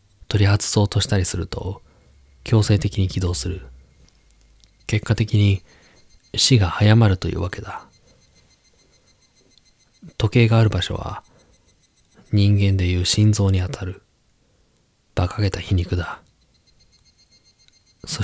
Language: Japanese